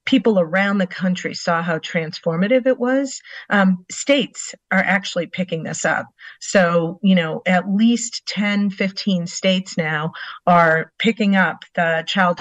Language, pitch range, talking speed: English, 170-200 Hz, 145 wpm